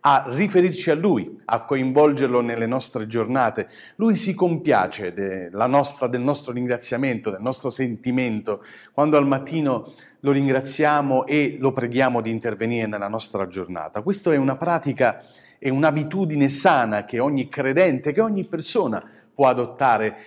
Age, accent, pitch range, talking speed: 40-59, native, 115-150 Hz, 140 wpm